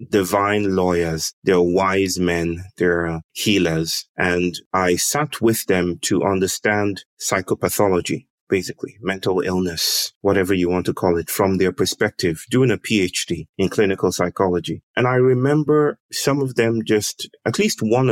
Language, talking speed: English, 140 wpm